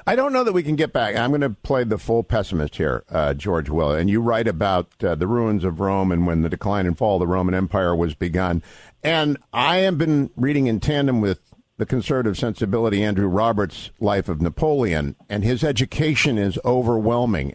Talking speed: 210 wpm